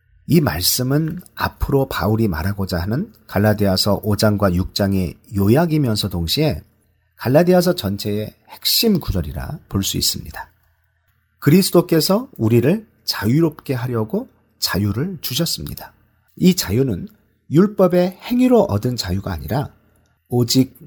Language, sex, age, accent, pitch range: Korean, male, 40-59, native, 95-150 Hz